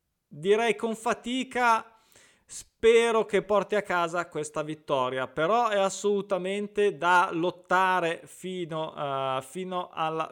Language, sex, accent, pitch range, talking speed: Italian, male, native, 145-200 Hz, 105 wpm